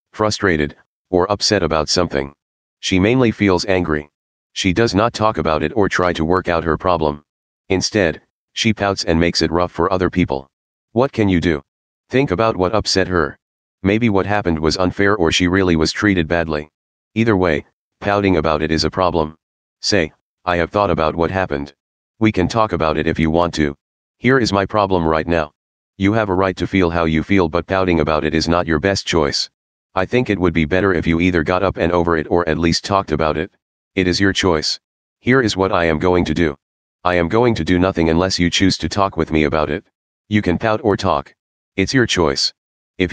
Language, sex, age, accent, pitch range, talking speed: English, male, 30-49, American, 80-100 Hz, 215 wpm